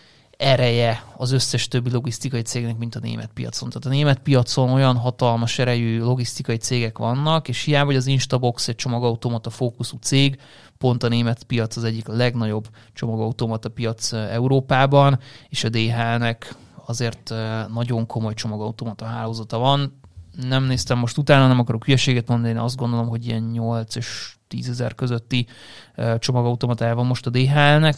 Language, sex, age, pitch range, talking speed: Hungarian, male, 30-49, 115-135 Hz, 150 wpm